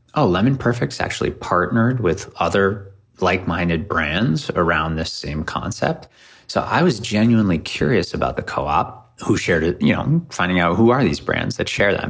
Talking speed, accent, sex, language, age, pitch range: 175 wpm, American, male, English, 30-49, 85-110 Hz